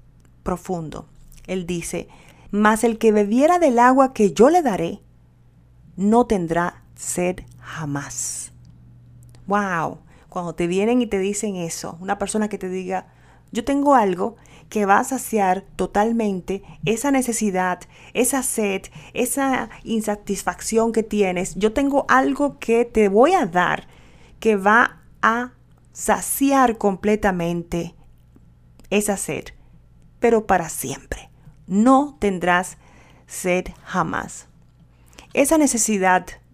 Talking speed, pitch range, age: 115 wpm, 180-225 Hz, 40-59